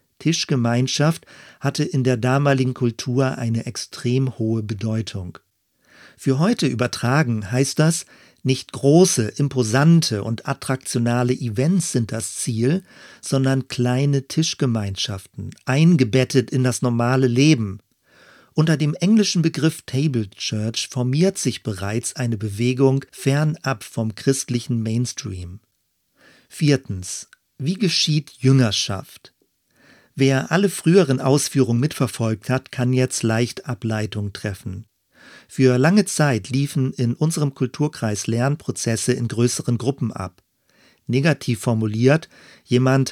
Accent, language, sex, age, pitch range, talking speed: German, German, male, 40-59, 115-140 Hz, 105 wpm